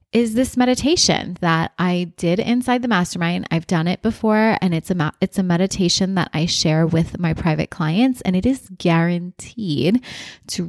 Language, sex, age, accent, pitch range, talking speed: English, female, 20-39, American, 165-210 Hz, 180 wpm